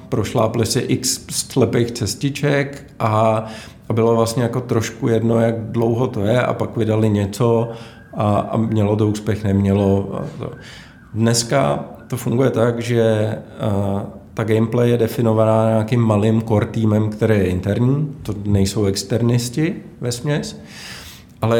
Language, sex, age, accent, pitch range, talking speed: Czech, male, 50-69, native, 105-120 Hz, 130 wpm